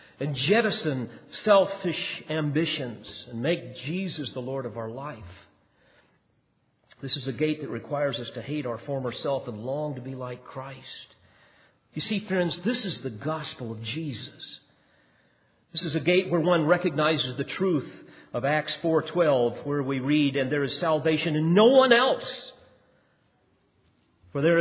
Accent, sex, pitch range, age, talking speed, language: American, male, 130-180 Hz, 50-69, 155 wpm, English